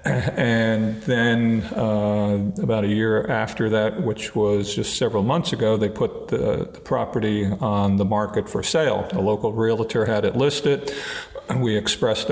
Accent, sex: American, male